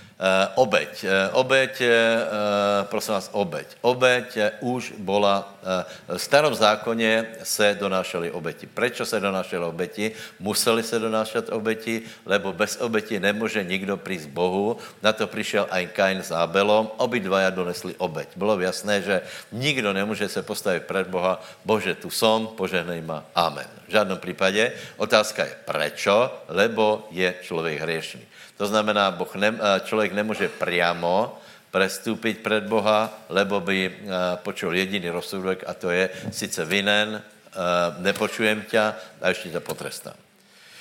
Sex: male